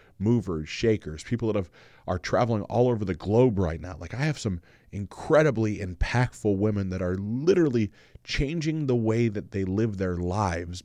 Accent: American